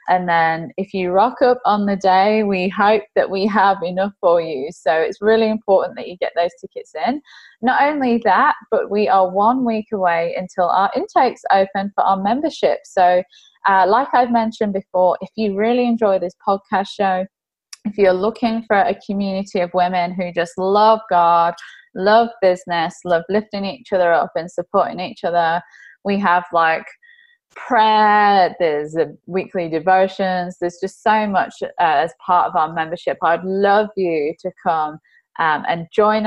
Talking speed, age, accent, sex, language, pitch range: 170 wpm, 20-39, British, female, English, 180-215 Hz